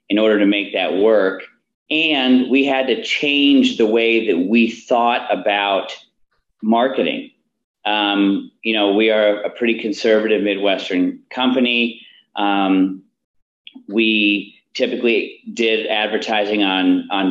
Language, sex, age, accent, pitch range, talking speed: English, male, 40-59, American, 105-125 Hz, 120 wpm